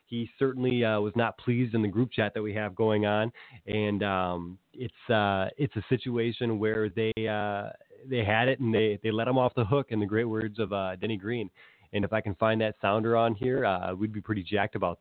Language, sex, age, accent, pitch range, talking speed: English, male, 20-39, American, 105-125 Hz, 235 wpm